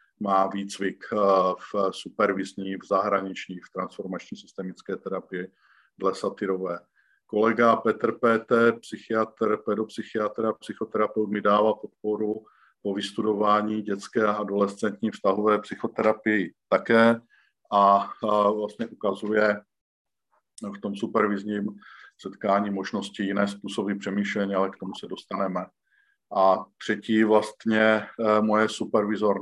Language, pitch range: Slovak, 100-110 Hz